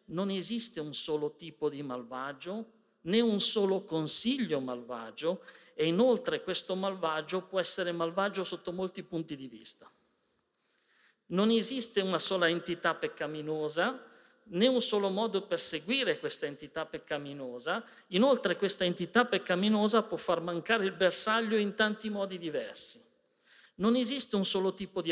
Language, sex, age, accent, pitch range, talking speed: Italian, male, 50-69, native, 160-220 Hz, 140 wpm